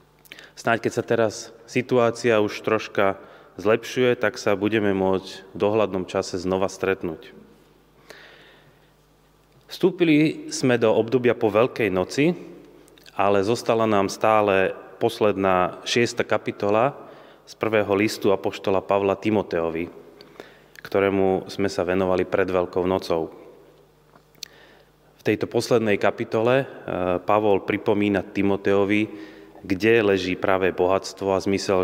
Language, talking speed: Slovak, 105 wpm